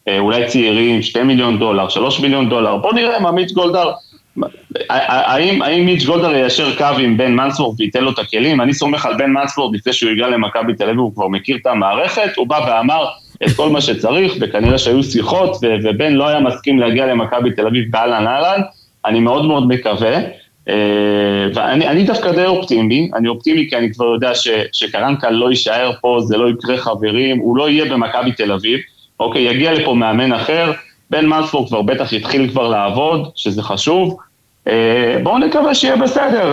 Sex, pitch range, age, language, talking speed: male, 115-155 Hz, 30-49, Hebrew, 170 wpm